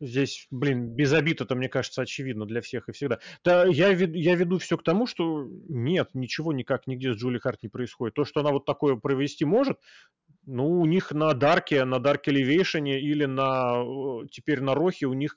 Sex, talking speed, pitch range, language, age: male, 205 wpm, 120-150 Hz, Russian, 30-49